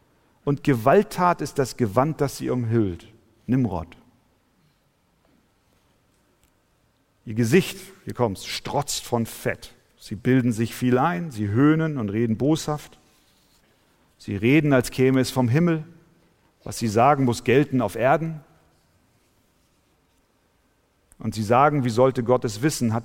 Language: German